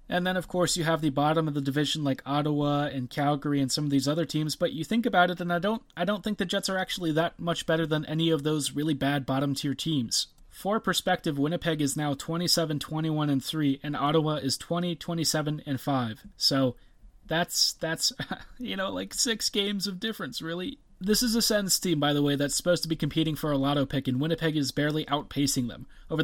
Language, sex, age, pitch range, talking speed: English, male, 30-49, 145-180 Hz, 215 wpm